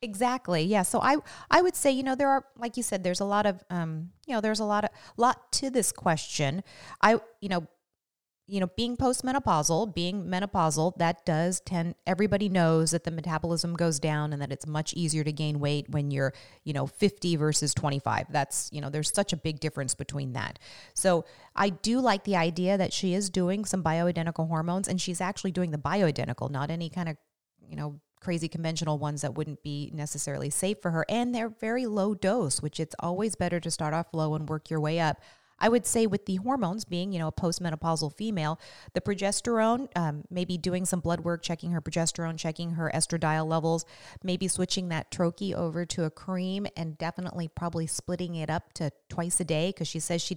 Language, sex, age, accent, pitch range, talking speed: English, female, 30-49, American, 155-190 Hz, 210 wpm